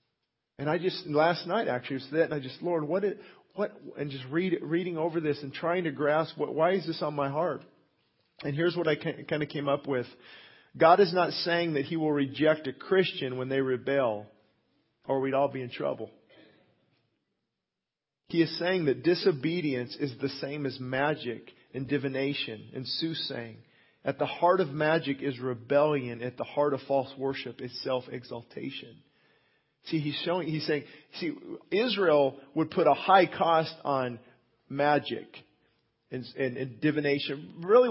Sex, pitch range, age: male, 135-165 Hz, 40-59